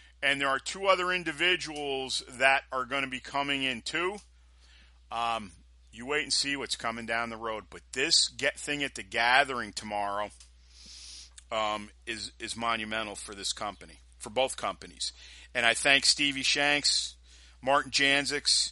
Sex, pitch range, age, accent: male, 95-125 Hz, 40-59, American